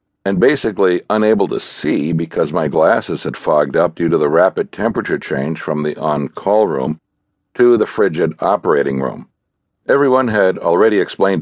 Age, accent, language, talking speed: 60-79, American, English, 160 wpm